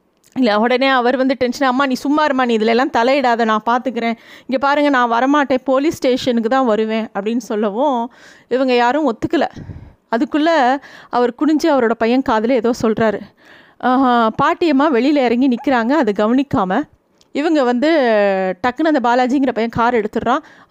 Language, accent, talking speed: Tamil, native, 140 wpm